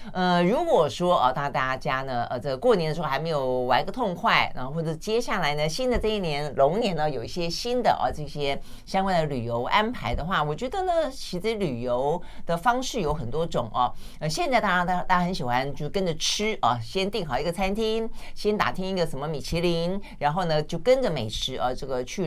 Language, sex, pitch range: Chinese, female, 140-210 Hz